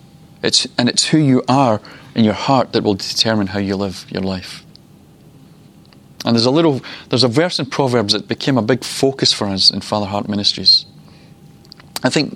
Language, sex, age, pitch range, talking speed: English, male, 30-49, 105-140 Hz, 185 wpm